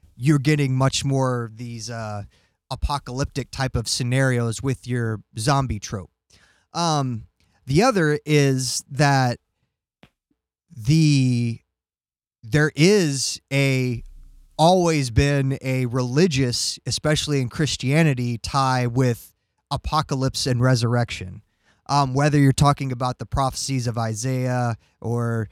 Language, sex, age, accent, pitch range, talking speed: English, male, 20-39, American, 115-145 Hz, 110 wpm